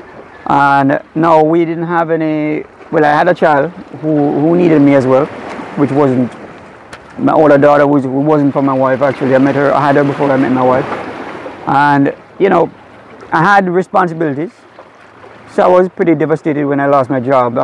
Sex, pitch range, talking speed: male, 140-165 Hz, 185 wpm